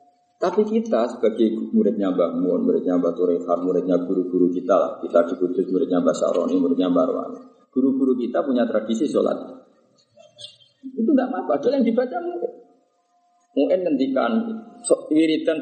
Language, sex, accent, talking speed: Indonesian, male, native, 140 wpm